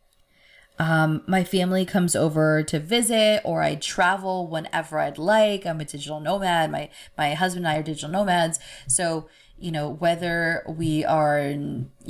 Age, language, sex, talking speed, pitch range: 20-39, English, female, 160 wpm, 155-200 Hz